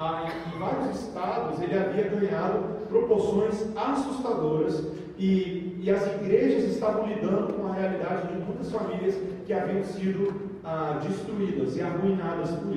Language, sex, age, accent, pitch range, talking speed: Portuguese, male, 40-59, Brazilian, 175-215 Hz, 130 wpm